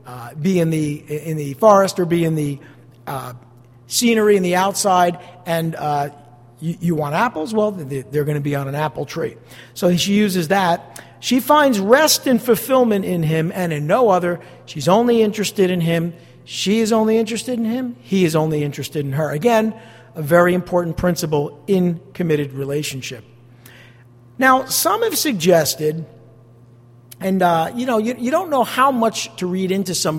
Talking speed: 180 wpm